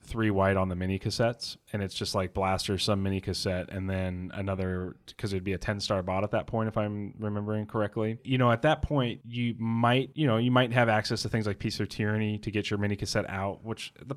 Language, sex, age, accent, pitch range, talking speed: English, male, 30-49, American, 100-120 Hz, 240 wpm